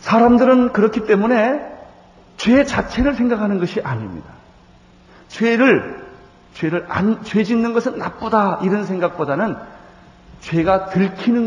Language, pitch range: Korean, 135-220 Hz